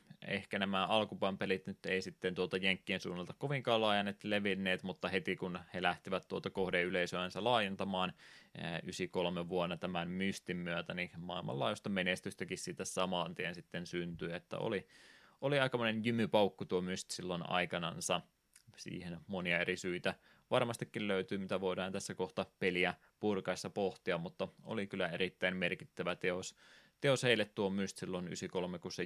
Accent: native